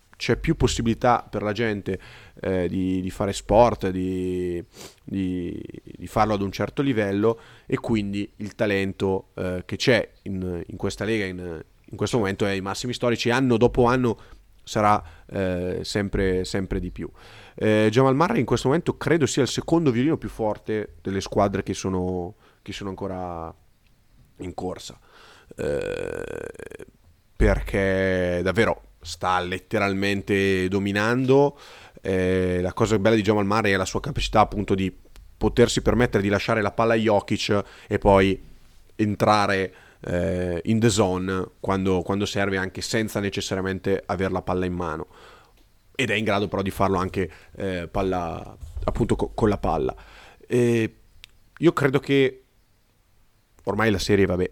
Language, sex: Italian, male